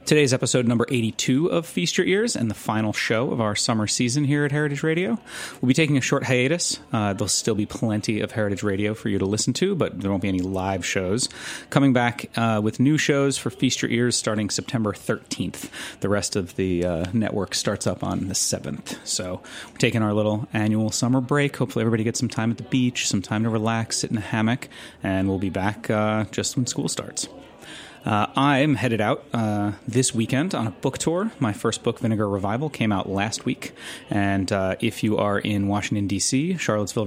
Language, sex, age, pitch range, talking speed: English, male, 30-49, 105-135 Hz, 215 wpm